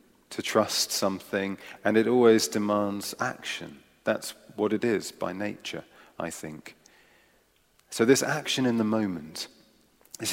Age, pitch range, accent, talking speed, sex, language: 40-59, 100-125 Hz, British, 135 wpm, male, English